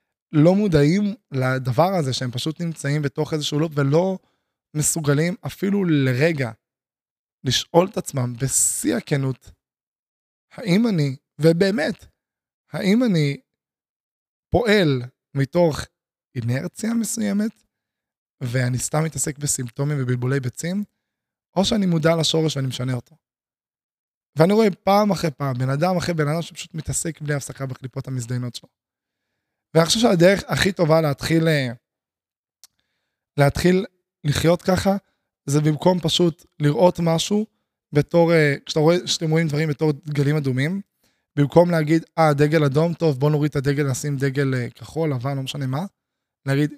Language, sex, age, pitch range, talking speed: Hebrew, male, 20-39, 140-170 Hz, 125 wpm